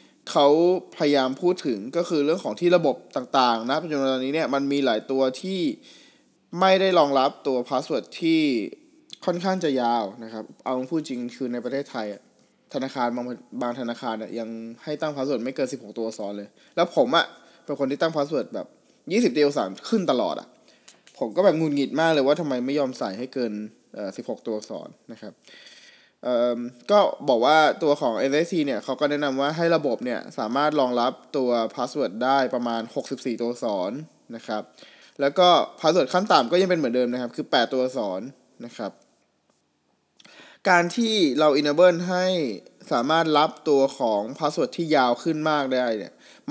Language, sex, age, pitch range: Thai, male, 20-39, 120-165 Hz